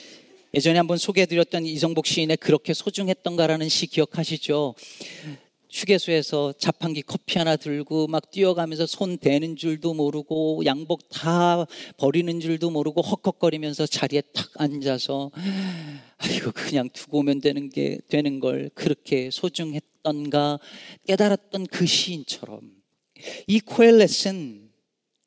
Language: Korean